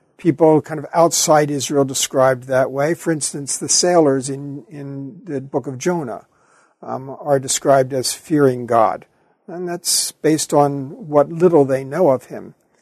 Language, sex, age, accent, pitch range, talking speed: English, male, 50-69, American, 135-170 Hz, 160 wpm